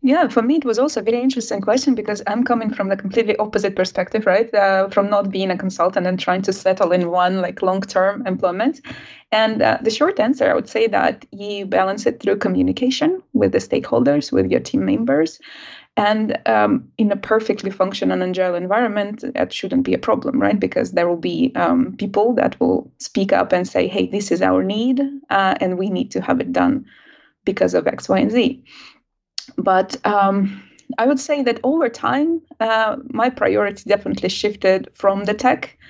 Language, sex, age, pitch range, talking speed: English, female, 20-39, 190-240 Hz, 195 wpm